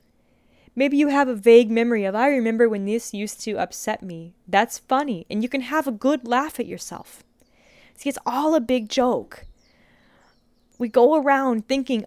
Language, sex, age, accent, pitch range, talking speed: English, female, 10-29, American, 210-265 Hz, 180 wpm